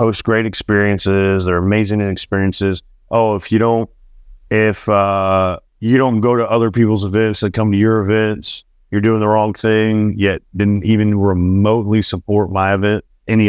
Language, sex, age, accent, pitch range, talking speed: English, male, 40-59, American, 90-115 Hz, 165 wpm